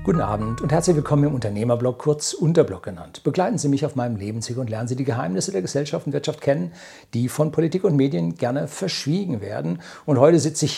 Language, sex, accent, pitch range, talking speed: German, male, German, 115-150 Hz, 210 wpm